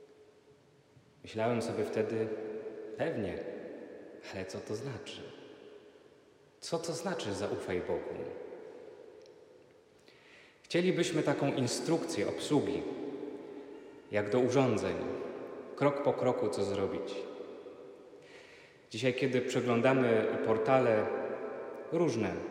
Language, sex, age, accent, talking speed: Polish, male, 30-49, native, 80 wpm